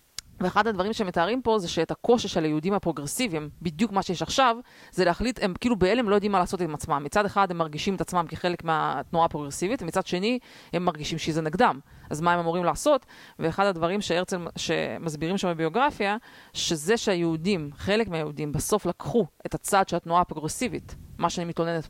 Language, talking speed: Hebrew, 180 wpm